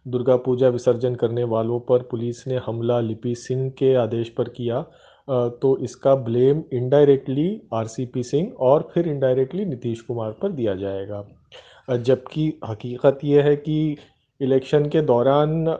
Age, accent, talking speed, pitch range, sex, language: 30-49, native, 140 wpm, 120-150 Hz, male, Hindi